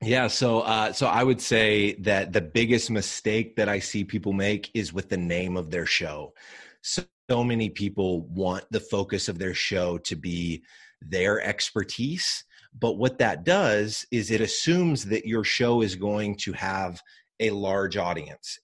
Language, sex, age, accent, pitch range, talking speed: English, male, 30-49, American, 100-125 Hz, 170 wpm